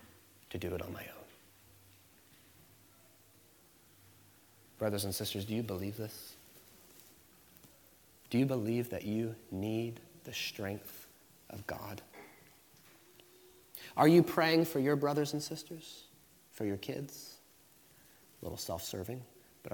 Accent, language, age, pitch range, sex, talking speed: American, English, 30-49, 100-140 Hz, male, 115 wpm